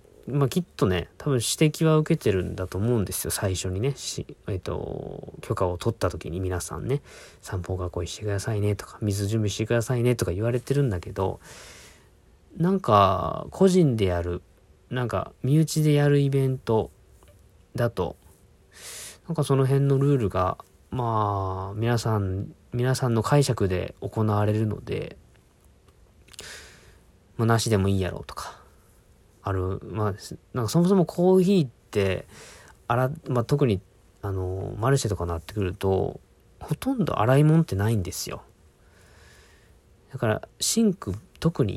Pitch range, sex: 95-130 Hz, male